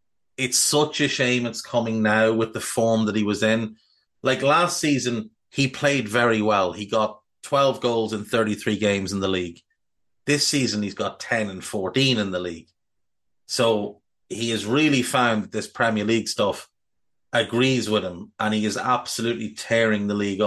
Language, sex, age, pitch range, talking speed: English, male, 30-49, 105-125 Hz, 175 wpm